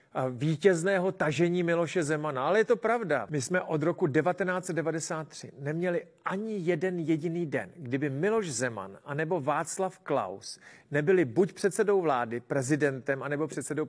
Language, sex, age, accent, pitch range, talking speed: Czech, male, 40-59, native, 145-185 Hz, 140 wpm